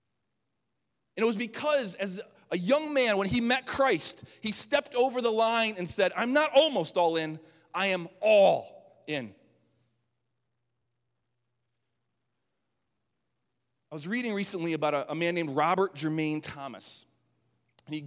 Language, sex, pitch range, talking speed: English, male, 125-170 Hz, 135 wpm